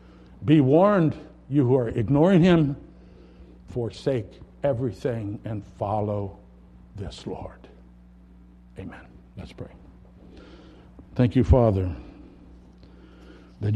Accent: American